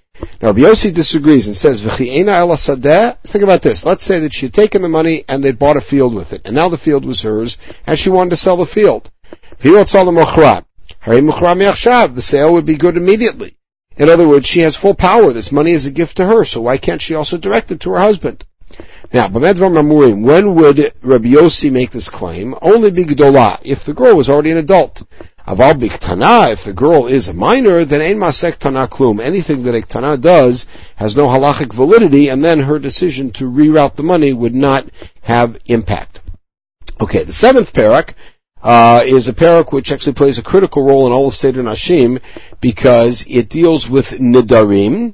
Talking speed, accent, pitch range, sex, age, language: 190 wpm, American, 125-170 Hz, male, 50-69, English